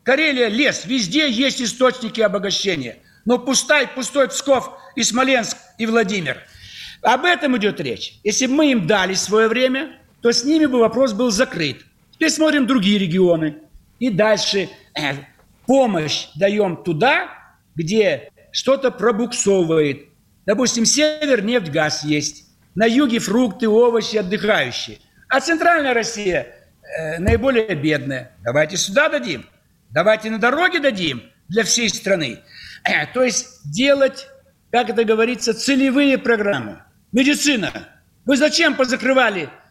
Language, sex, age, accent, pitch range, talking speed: Russian, male, 60-79, native, 210-270 Hz, 125 wpm